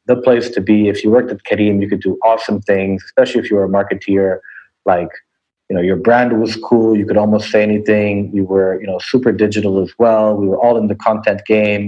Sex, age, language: male, 30-49, English